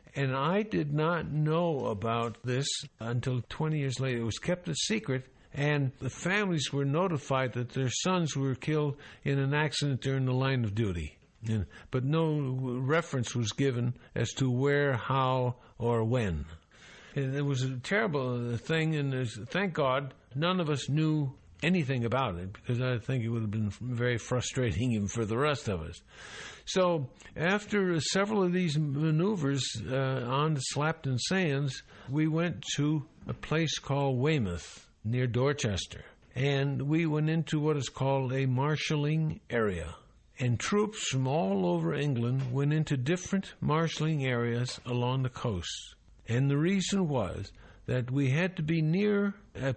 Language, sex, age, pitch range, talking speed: English, male, 60-79, 120-155 Hz, 160 wpm